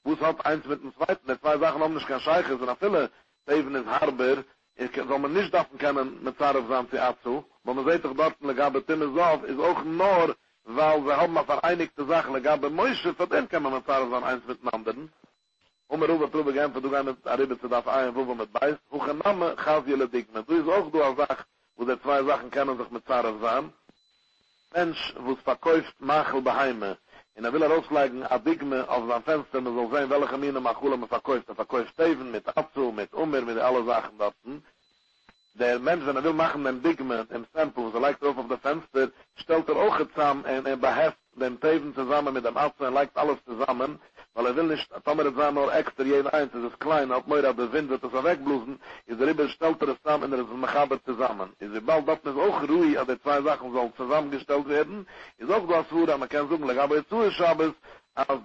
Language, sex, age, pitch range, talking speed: English, male, 60-79, 130-155 Hz, 205 wpm